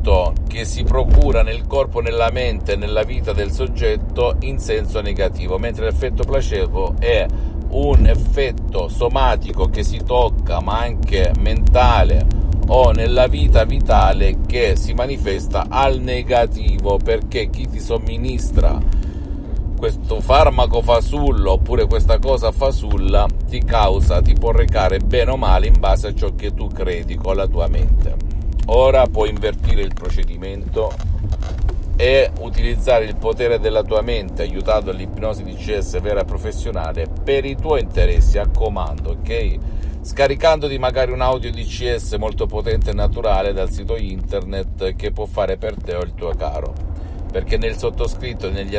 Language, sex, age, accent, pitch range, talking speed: Italian, male, 50-69, native, 80-105 Hz, 145 wpm